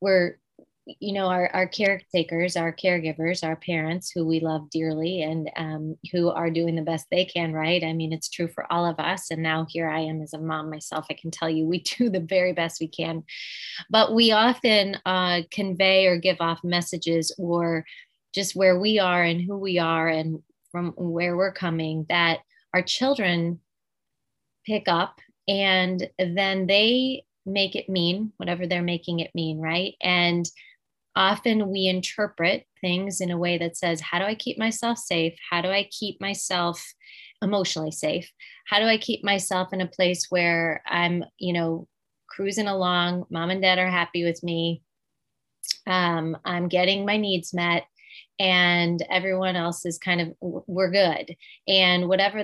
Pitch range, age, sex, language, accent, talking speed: 165-190 Hz, 20-39, female, English, American, 175 wpm